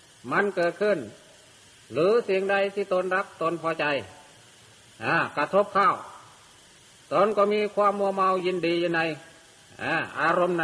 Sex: male